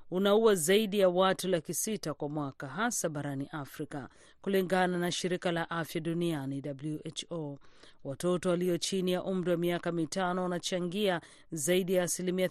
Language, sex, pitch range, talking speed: Swahili, female, 155-195 Hz, 140 wpm